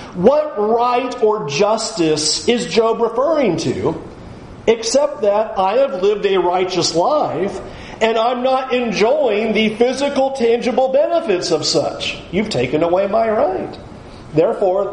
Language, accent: English, American